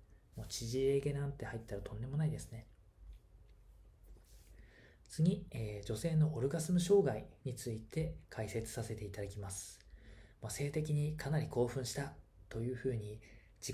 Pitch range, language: 105-140 Hz, Japanese